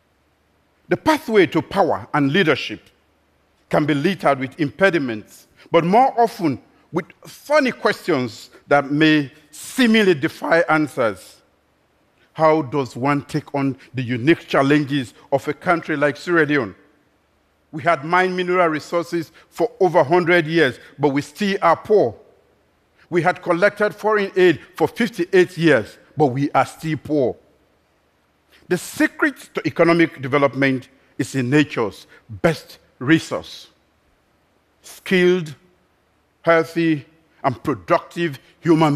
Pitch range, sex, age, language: 140-180 Hz, male, 50-69, Korean